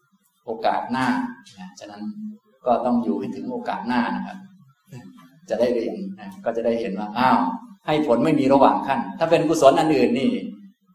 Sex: male